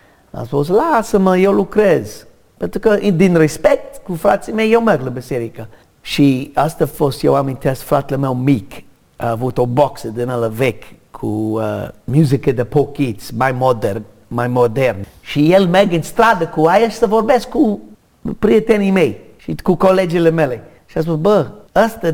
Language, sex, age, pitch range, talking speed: Romanian, male, 50-69, 130-195 Hz, 170 wpm